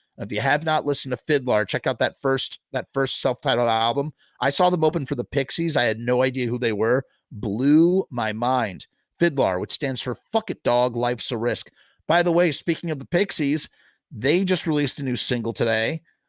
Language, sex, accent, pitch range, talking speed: English, male, American, 120-160 Hz, 215 wpm